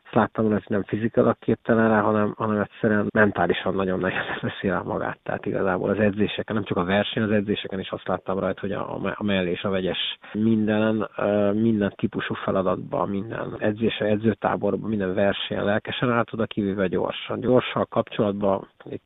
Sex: male